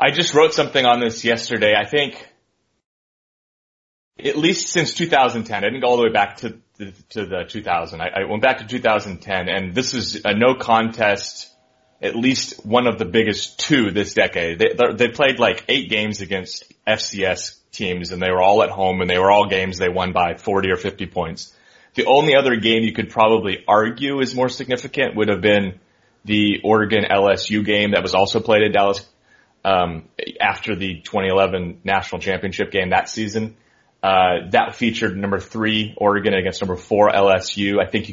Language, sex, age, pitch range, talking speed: English, male, 30-49, 95-115 Hz, 185 wpm